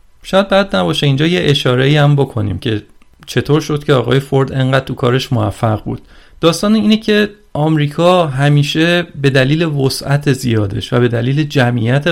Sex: male